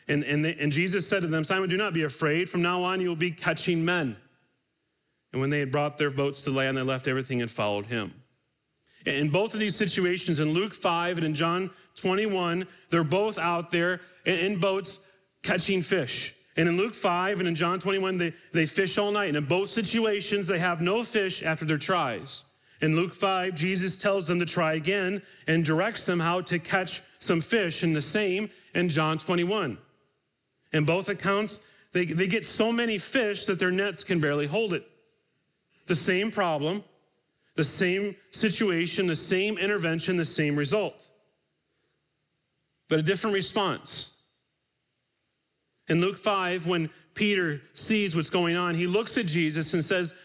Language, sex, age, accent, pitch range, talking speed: English, male, 40-59, American, 160-200 Hz, 180 wpm